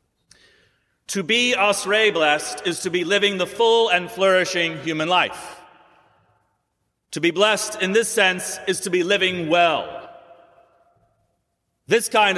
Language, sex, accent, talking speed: English, male, American, 125 wpm